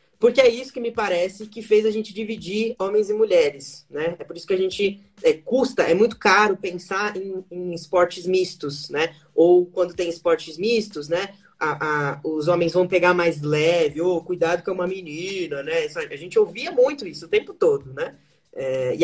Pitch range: 165-235 Hz